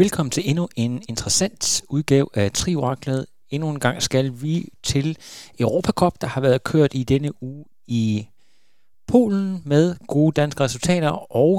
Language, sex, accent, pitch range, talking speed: Danish, male, native, 120-160 Hz, 150 wpm